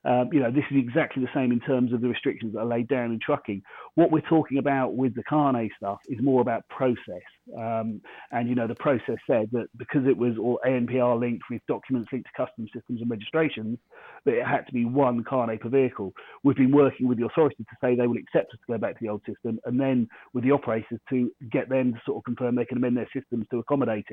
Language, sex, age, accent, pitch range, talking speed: English, male, 30-49, British, 120-135 Hz, 250 wpm